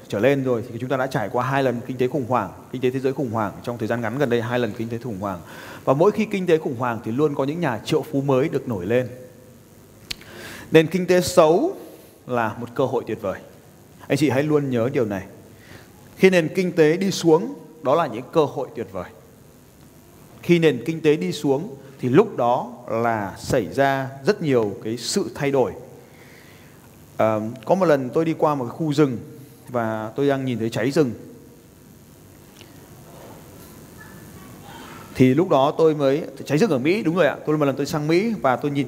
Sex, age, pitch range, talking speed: male, 30-49, 120-155 Hz, 210 wpm